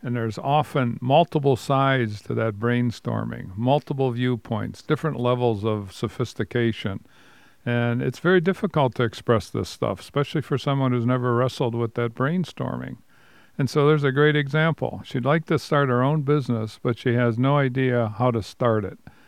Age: 50-69